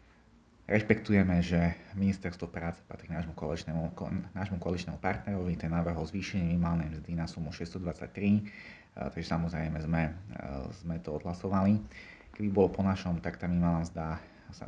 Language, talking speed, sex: Slovak, 145 wpm, male